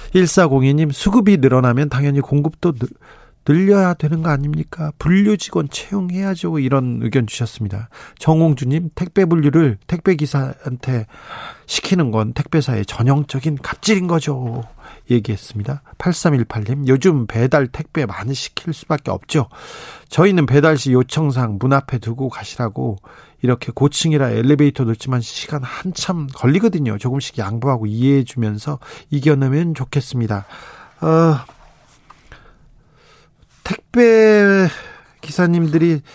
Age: 40-59